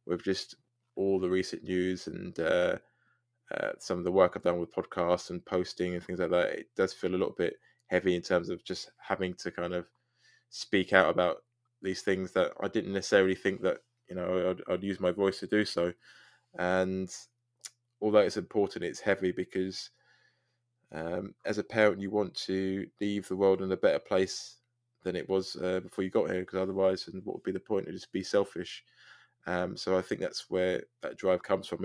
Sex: male